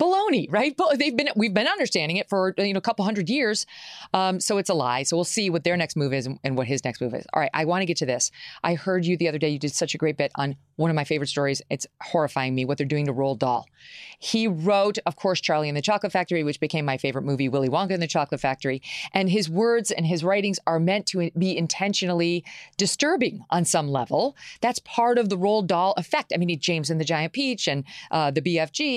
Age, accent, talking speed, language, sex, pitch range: 40-59, American, 260 wpm, English, female, 145-205 Hz